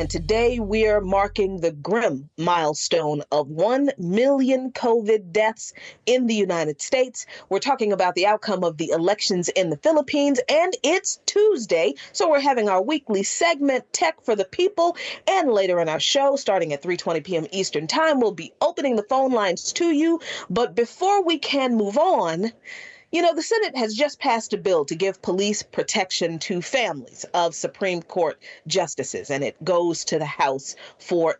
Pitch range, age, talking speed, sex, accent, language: 180-280 Hz, 40-59, 175 wpm, female, American, English